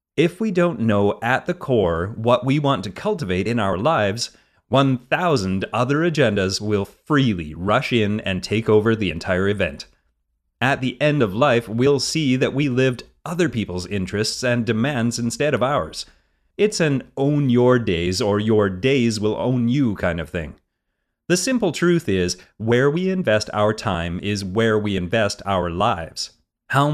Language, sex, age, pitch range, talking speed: English, male, 30-49, 100-140 Hz, 170 wpm